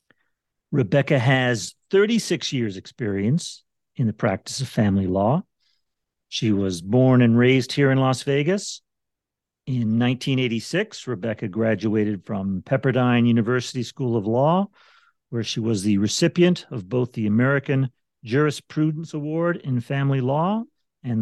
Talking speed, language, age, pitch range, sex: 125 wpm, English, 50-69, 110-145 Hz, male